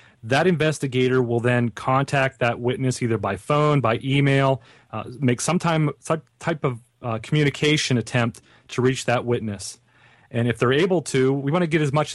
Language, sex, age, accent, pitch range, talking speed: English, male, 30-49, American, 120-145 Hz, 180 wpm